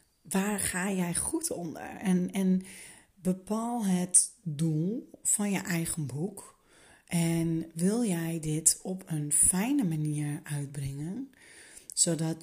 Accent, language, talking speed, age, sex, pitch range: Dutch, Dutch, 115 wpm, 30-49, female, 165-195 Hz